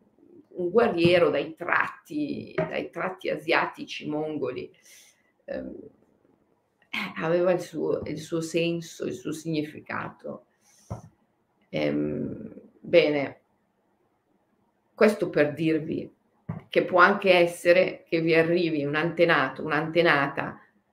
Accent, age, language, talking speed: native, 40-59, Italian, 95 wpm